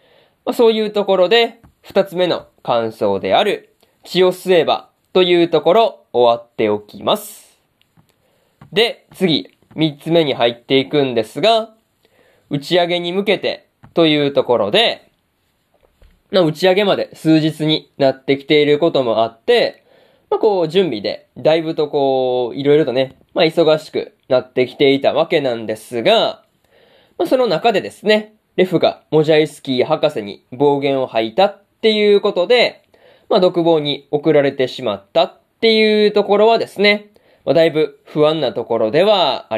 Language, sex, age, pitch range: Japanese, male, 20-39, 140-200 Hz